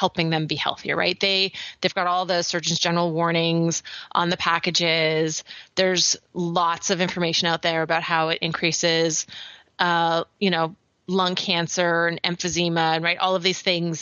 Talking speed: 165 wpm